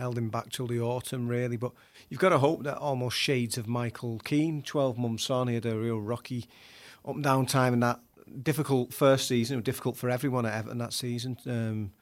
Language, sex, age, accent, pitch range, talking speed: English, male, 40-59, British, 115-130 Hz, 225 wpm